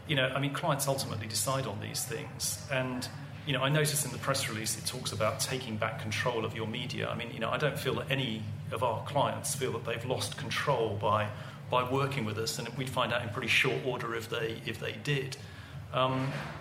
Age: 40-59